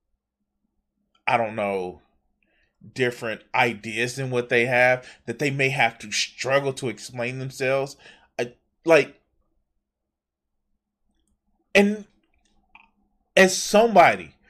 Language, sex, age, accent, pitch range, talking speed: English, male, 20-39, American, 110-160 Hz, 95 wpm